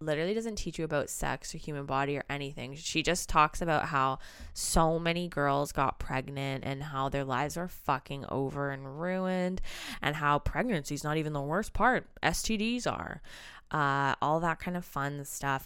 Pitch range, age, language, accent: 140-180 Hz, 20-39, English, American